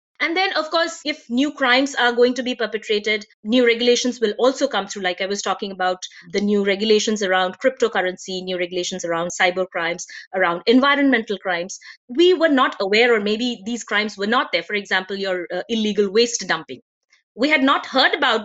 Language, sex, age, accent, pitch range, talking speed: English, female, 30-49, Indian, 200-275 Hz, 190 wpm